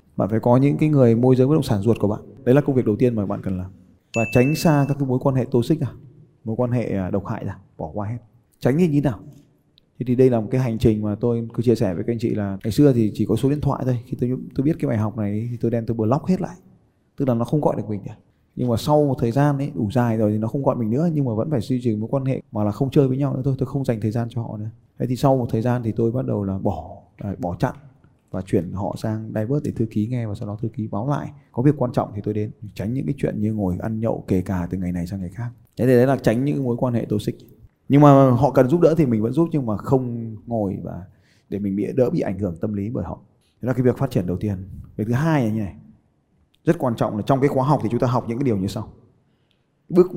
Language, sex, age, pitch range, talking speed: Vietnamese, male, 20-39, 105-135 Hz, 315 wpm